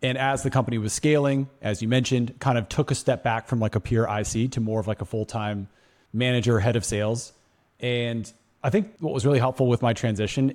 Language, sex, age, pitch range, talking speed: English, male, 30-49, 110-130 Hz, 230 wpm